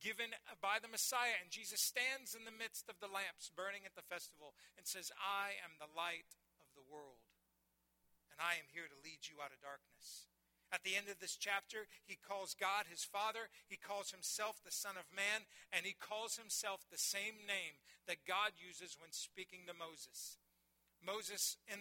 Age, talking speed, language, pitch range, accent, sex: 40-59, 195 wpm, English, 150-215 Hz, American, male